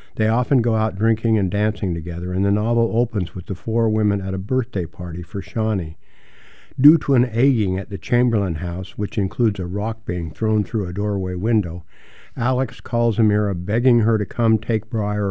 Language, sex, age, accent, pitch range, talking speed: English, male, 60-79, American, 95-115 Hz, 190 wpm